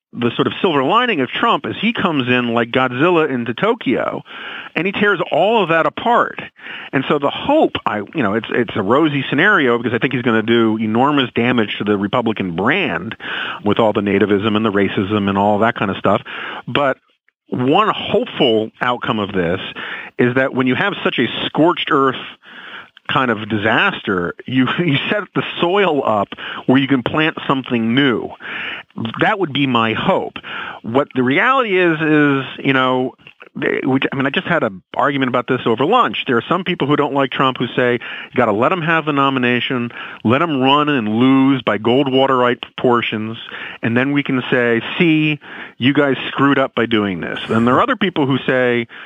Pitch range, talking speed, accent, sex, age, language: 115-145 Hz, 200 wpm, American, male, 40-59, English